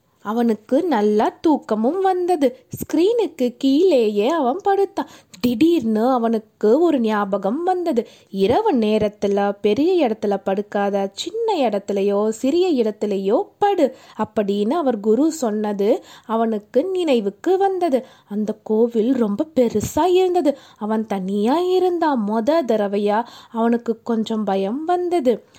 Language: Tamil